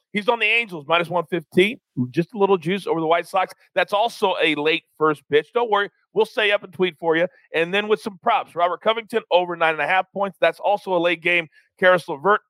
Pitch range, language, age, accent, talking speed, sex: 165-215 Hz, English, 40-59, American, 220 wpm, male